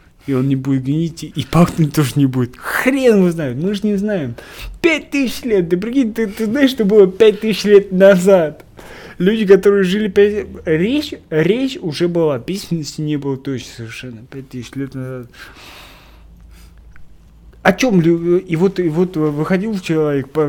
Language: Russian